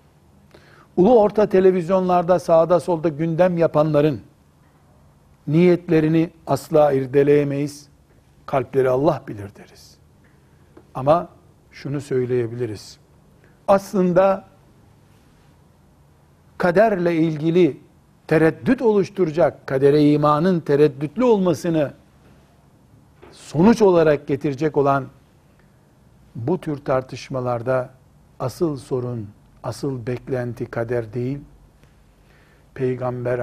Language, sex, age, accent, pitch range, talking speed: Turkish, male, 60-79, native, 115-155 Hz, 70 wpm